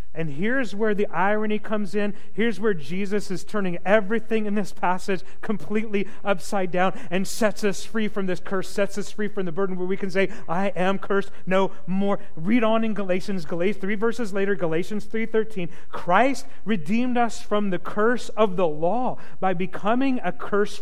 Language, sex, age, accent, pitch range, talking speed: English, male, 40-59, American, 190-230 Hz, 185 wpm